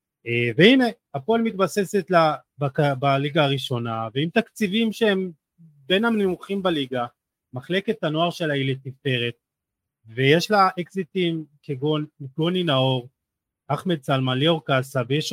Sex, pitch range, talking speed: male, 130-170 Hz, 115 wpm